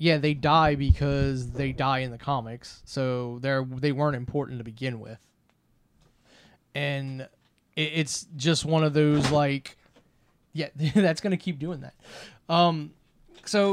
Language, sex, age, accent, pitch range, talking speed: English, male, 20-39, American, 135-165 Hz, 145 wpm